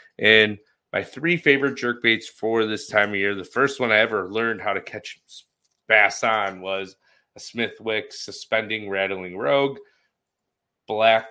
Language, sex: English, male